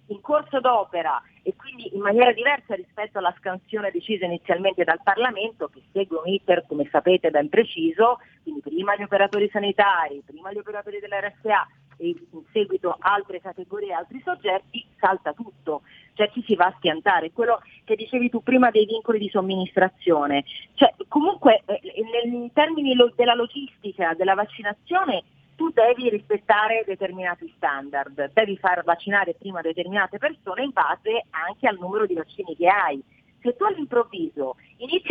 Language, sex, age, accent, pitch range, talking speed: Italian, female, 40-59, native, 185-240 Hz, 155 wpm